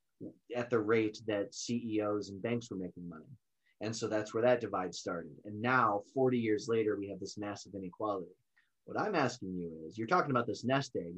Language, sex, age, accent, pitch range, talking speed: English, male, 30-49, American, 100-135 Hz, 205 wpm